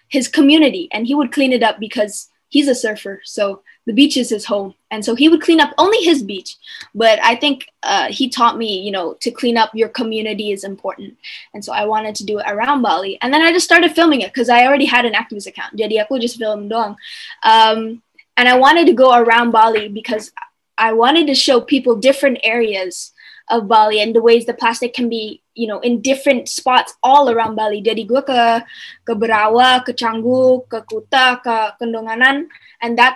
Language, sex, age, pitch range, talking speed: Indonesian, female, 10-29, 220-275 Hz, 210 wpm